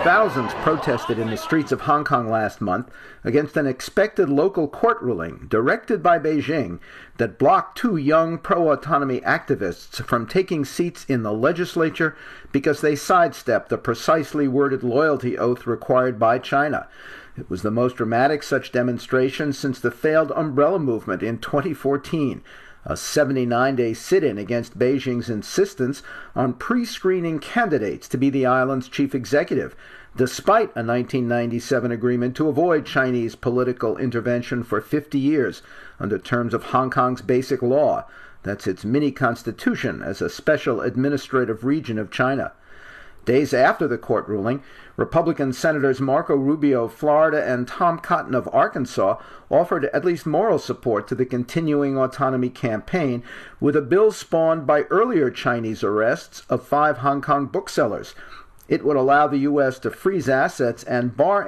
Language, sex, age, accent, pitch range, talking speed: English, male, 50-69, American, 125-155 Hz, 145 wpm